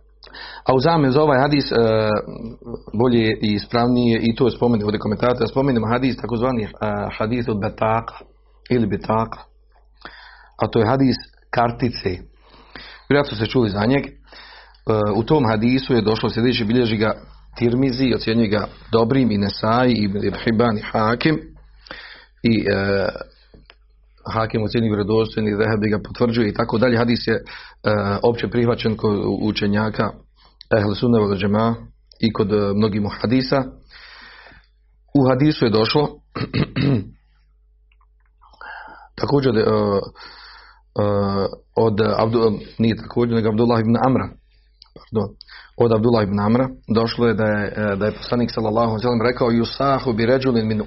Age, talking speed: 40-59, 130 wpm